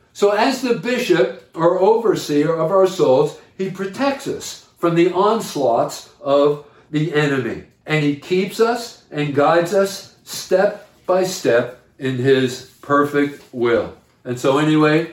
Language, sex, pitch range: English, male, 140-180 Hz